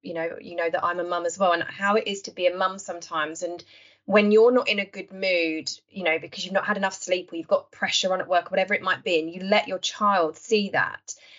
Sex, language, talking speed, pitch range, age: female, English, 280 wpm, 180-230 Hz, 20-39